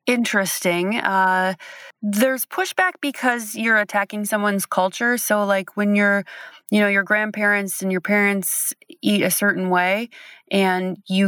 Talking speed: 140 wpm